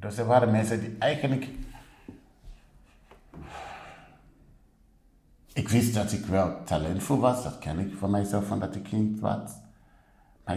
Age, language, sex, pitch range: 60-79, Dutch, male, 85-110 Hz